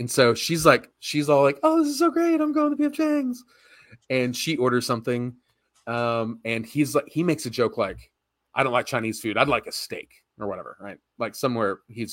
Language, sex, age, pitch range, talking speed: English, male, 30-49, 110-145 Hz, 225 wpm